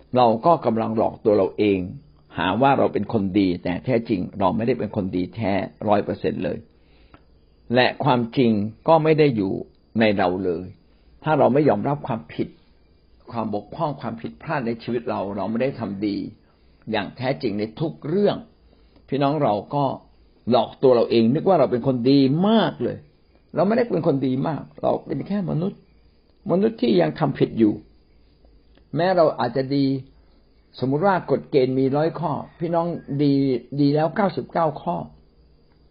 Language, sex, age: Thai, male, 60-79